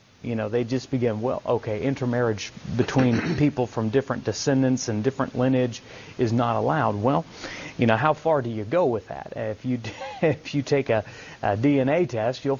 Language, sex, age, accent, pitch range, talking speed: English, male, 30-49, American, 115-140 Hz, 185 wpm